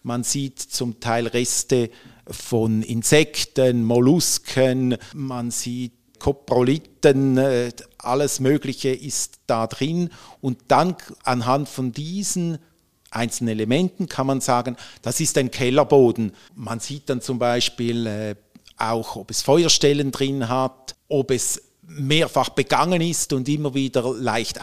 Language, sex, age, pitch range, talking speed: German, male, 50-69, 120-150 Hz, 120 wpm